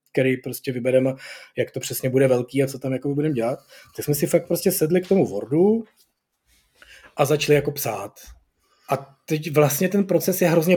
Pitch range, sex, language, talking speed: 130-165 Hz, male, Czech, 190 wpm